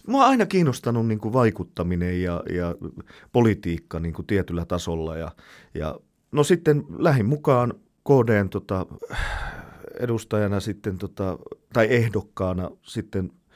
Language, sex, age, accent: Finnish, male, 30-49, native